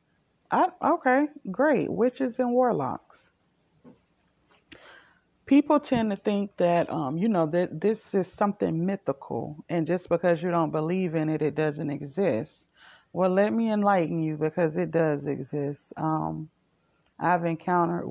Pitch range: 160-195 Hz